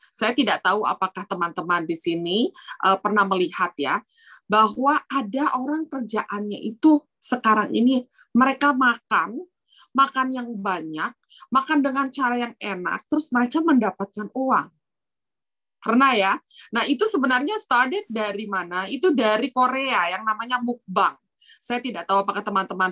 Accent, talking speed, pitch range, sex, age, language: native, 130 wpm, 205-265 Hz, female, 20-39, Indonesian